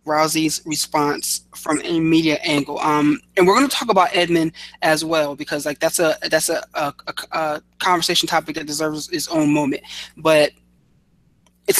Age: 20-39